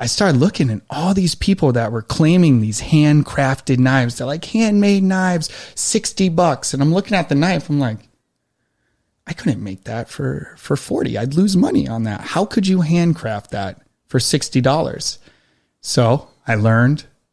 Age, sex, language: 30-49, male, English